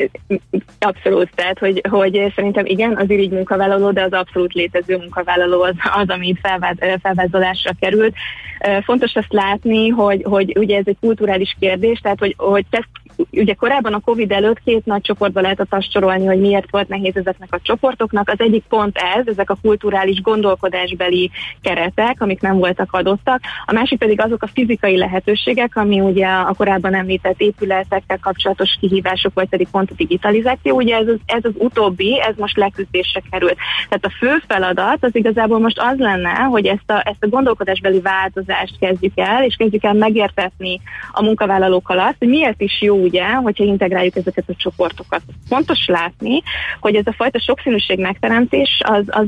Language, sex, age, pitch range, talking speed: Hungarian, female, 20-39, 190-220 Hz, 170 wpm